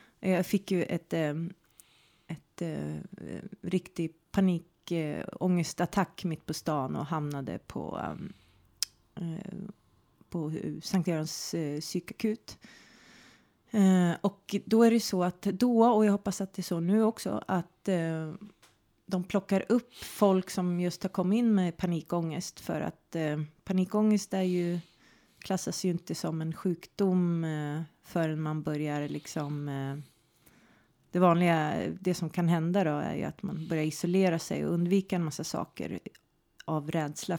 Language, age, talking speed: Swedish, 30-49, 150 wpm